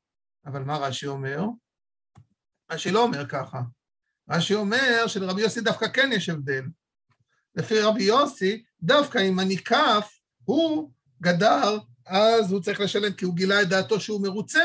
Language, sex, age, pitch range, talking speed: Hebrew, male, 50-69, 170-230 Hz, 150 wpm